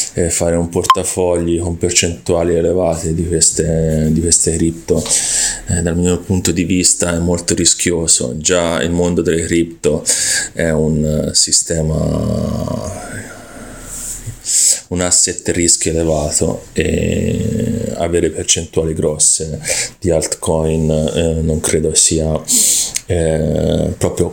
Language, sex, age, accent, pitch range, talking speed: Italian, male, 30-49, native, 85-95 Hz, 110 wpm